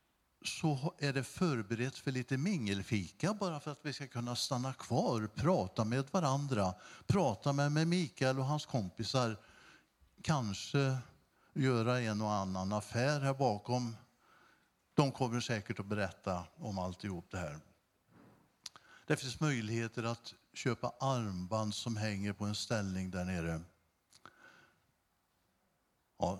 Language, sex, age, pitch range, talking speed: Swedish, male, 60-79, 105-145 Hz, 125 wpm